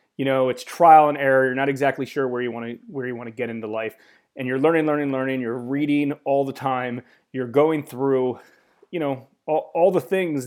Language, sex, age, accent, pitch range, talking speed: English, male, 30-49, American, 125-145 Hz, 205 wpm